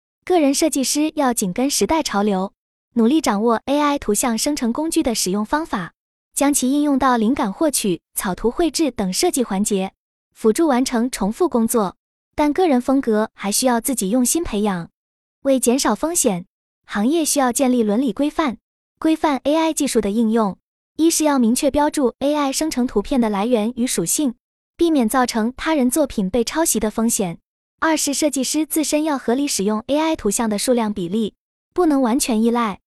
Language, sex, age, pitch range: Chinese, female, 20-39, 220-295 Hz